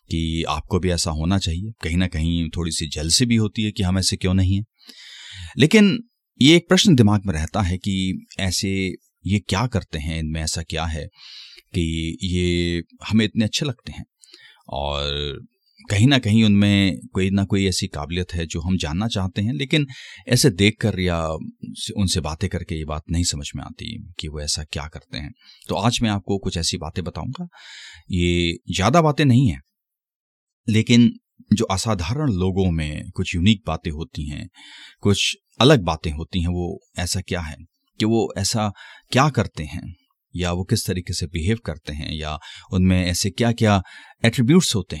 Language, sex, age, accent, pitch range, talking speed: Hindi, male, 30-49, native, 85-110 Hz, 180 wpm